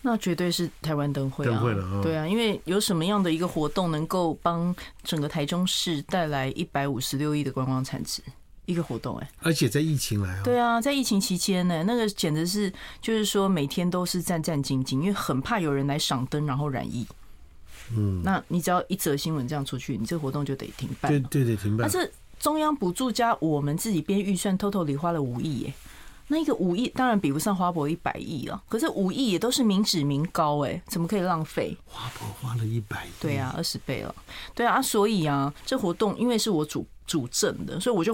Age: 30-49